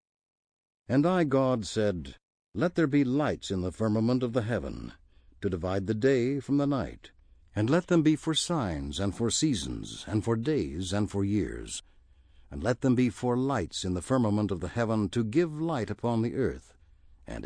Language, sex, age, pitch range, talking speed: English, male, 60-79, 85-130 Hz, 190 wpm